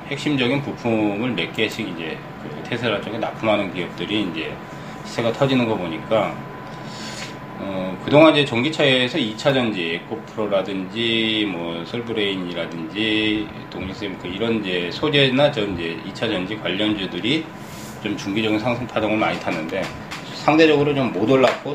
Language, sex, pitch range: Korean, male, 95-135 Hz